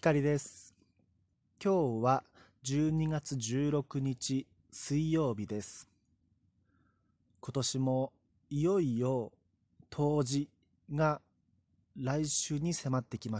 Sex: male